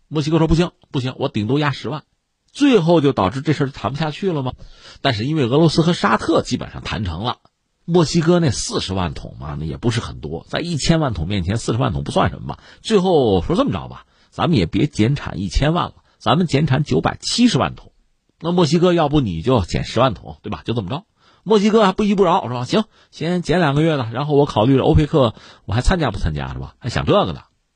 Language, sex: Chinese, male